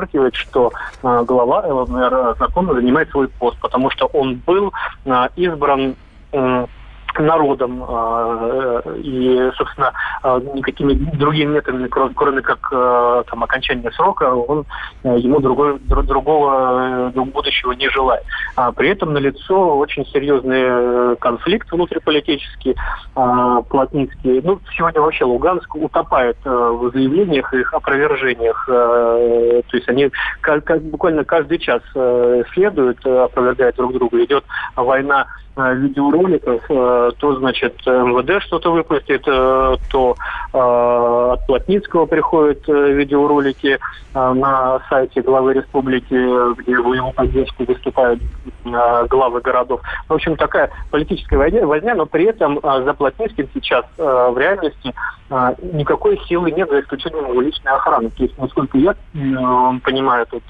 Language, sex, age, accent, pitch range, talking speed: Russian, male, 20-39, native, 125-150 Hz, 120 wpm